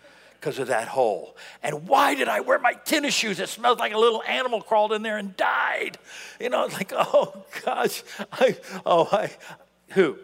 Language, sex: English, male